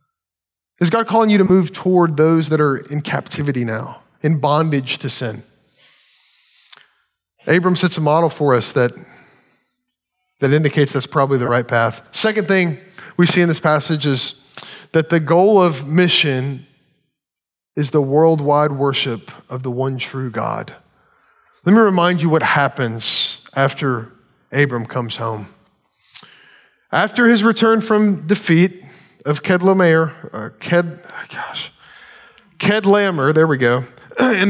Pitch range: 135-180 Hz